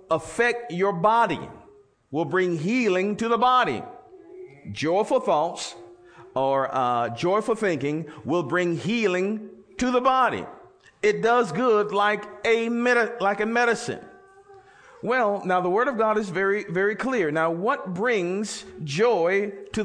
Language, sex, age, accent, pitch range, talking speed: English, male, 50-69, American, 135-205 Hz, 135 wpm